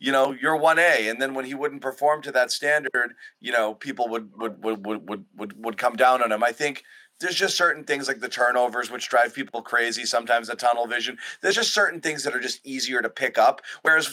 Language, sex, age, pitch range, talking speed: English, male, 30-49, 115-140 Hz, 235 wpm